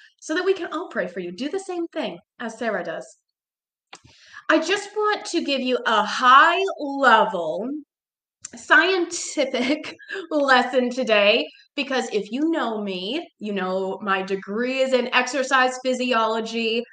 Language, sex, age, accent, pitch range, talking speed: English, female, 20-39, American, 210-275 Hz, 140 wpm